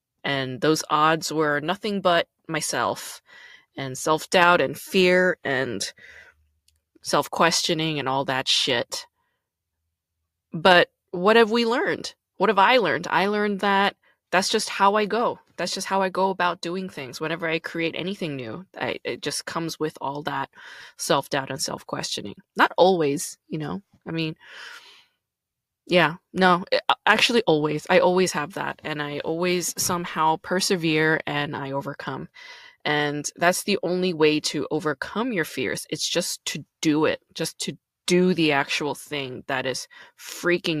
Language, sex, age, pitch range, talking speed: English, female, 20-39, 150-185 Hz, 150 wpm